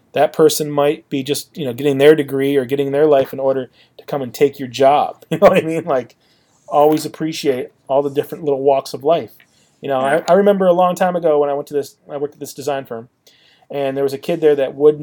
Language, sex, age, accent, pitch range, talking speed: English, male, 30-49, American, 135-175 Hz, 260 wpm